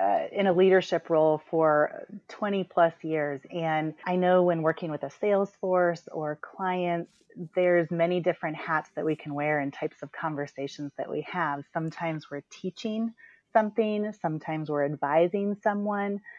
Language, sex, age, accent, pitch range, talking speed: English, female, 30-49, American, 155-185 Hz, 155 wpm